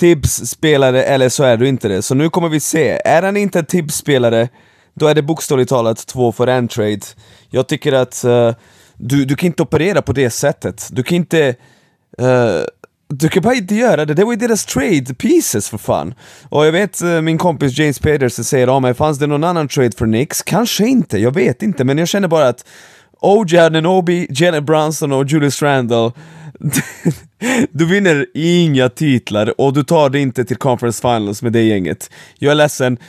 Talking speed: 200 wpm